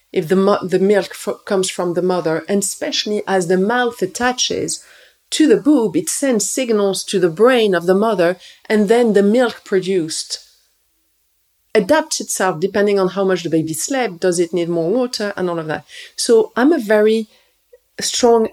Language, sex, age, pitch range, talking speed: English, female, 40-59, 180-225 Hz, 180 wpm